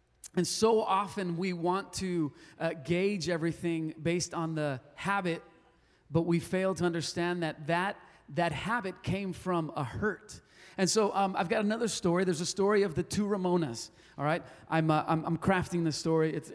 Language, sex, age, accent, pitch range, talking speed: English, male, 30-49, American, 165-205 Hz, 180 wpm